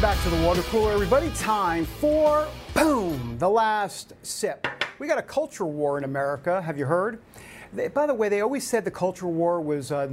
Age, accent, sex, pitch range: 50-69, American, male, 160-235 Hz